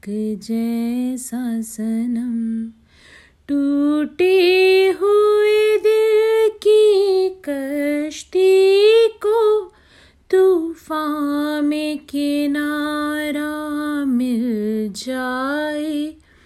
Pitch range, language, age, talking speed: 225-310 Hz, Hindi, 30-49, 50 wpm